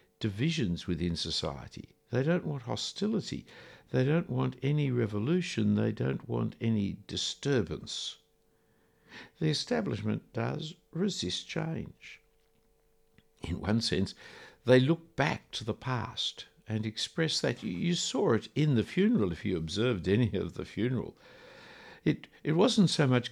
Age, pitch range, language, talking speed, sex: 60-79, 105-150 Hz, English, 135 wpm, male